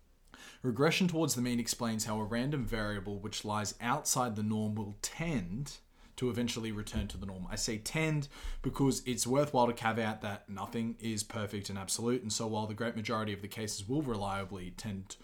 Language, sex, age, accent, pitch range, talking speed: English, male, 20-39, Australian, 100-120 Hz, 190 wpm